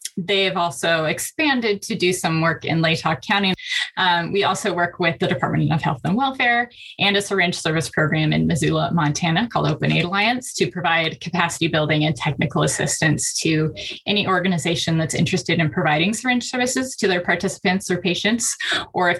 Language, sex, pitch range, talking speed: English, female, 155-195 Hz, 175 wpm